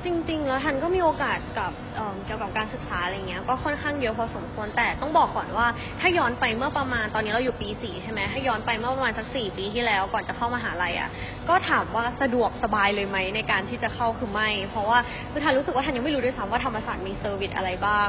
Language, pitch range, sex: Thai, 215-270 Hz, female